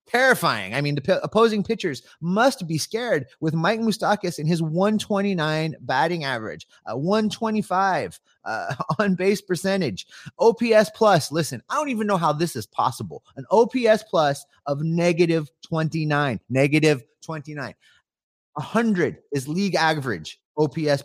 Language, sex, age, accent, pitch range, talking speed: English, male, 30-49, American, 130-195 Hz, 135 wpm